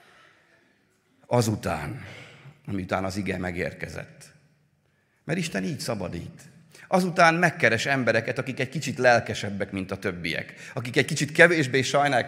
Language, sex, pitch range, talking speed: Hungarian, male, 130-180 Hz, 115 wpm